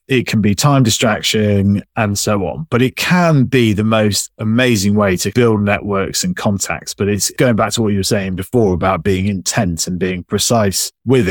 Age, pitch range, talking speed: 30-49, 100-130 Hz, 200 wpm